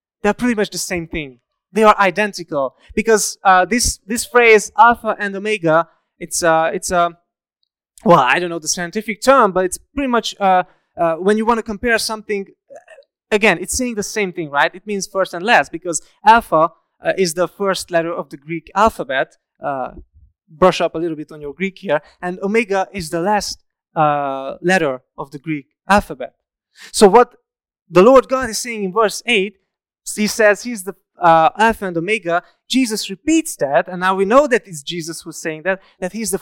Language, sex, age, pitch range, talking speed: English, male, 20-39, 170-220 Hz, 195 wpm